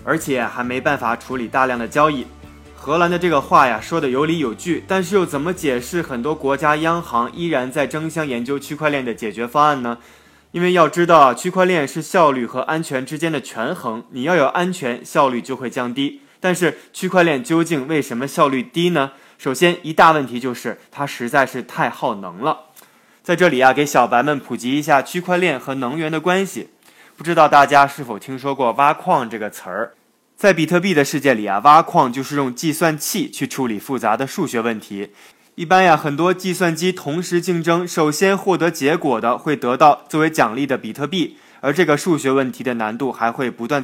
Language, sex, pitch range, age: Chinese, male, 130-170 Hz, 20-39